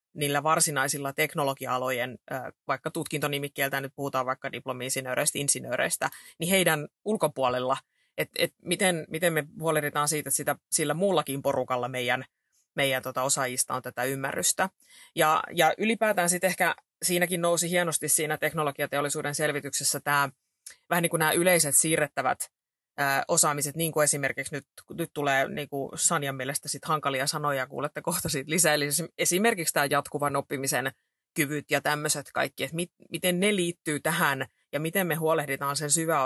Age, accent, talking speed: 30-49, native, 145 wpm